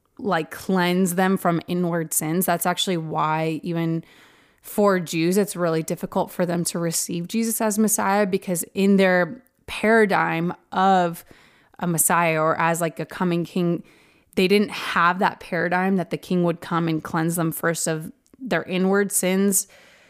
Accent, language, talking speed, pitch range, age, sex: American, English, 160 wpm, 170-190 Hz, 20-39, female